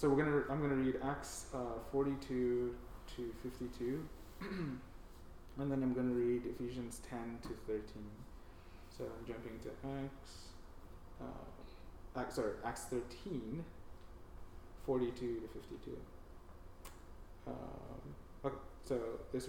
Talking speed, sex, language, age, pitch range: 125 wpm, male, English, 20-39, 105-125 Hz